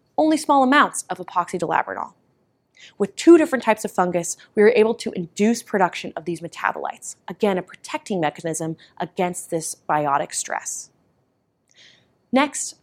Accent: American